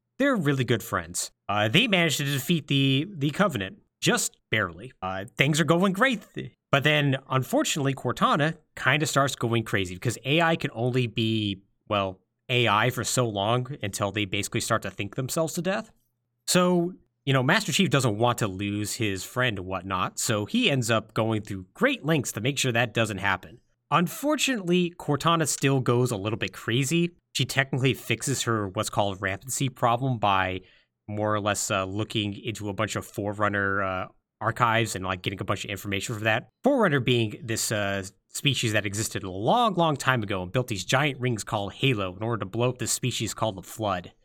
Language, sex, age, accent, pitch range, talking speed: English, male, 30-49, American, 105-145 Hz, 190 wpm